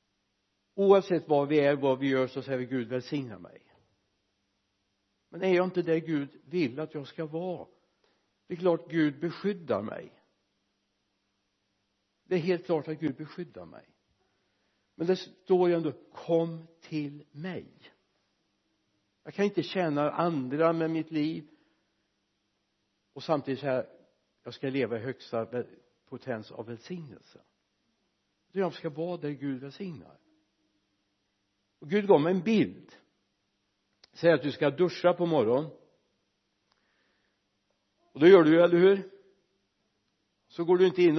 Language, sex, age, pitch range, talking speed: Swedish, male, 60-79, 105-170 Hz, 140 wpm